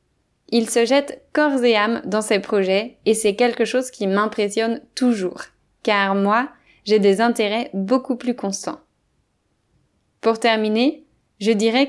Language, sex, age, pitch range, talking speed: French, female, 20-39, 195-235 Hz, 140 wpm